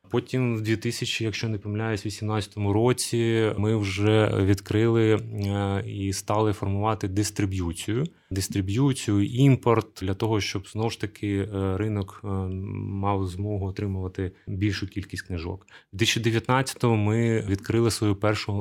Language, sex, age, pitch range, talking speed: Ukrainian, male, 20-39, 95-110 Hz, 120 wpm